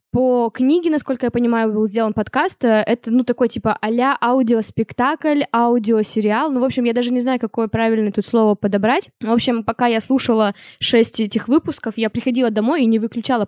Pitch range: 210-245 Hz